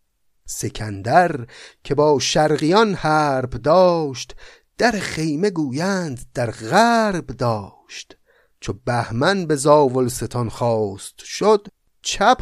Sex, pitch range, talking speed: male, 115-175 Hz, 95 wpm